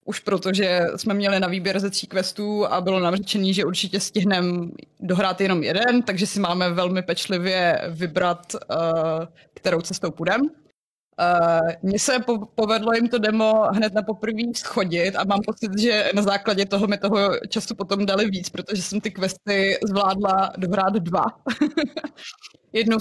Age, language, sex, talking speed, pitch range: 20-39, Czech, female, 155 wpm, 180-220 Hz